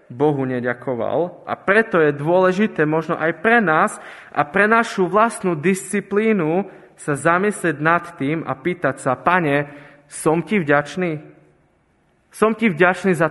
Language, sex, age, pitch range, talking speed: Slovak, male, 20-39, 135-180 Hz, 135 wpm